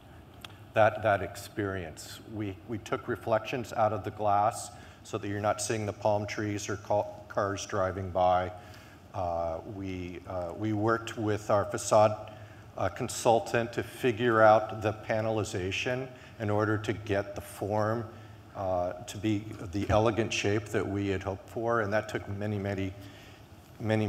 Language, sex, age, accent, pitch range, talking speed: English, male, 50-69, American, 100-115 Hz, 155 wpm